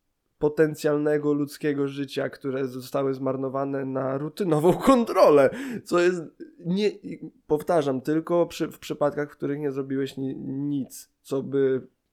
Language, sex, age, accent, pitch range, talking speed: Polish, male, 20-39, native, 135-175 Hz, 120 wpm